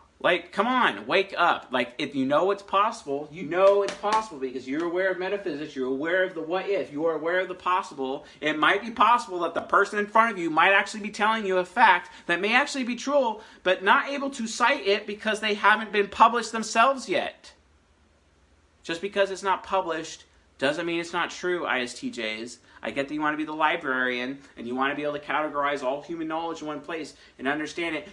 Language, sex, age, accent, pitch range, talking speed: English, male, 40-59, American, 140-210 Hz, 220 wpm